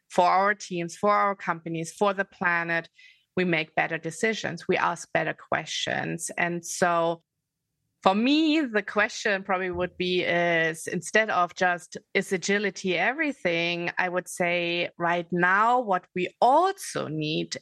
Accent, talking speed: German, 145 wpm